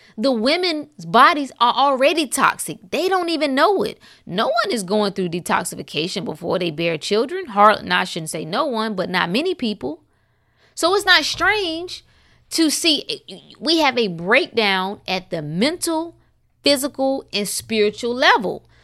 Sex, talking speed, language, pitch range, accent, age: female, 150 wpm, English, 170-280 Hz, American, 20-39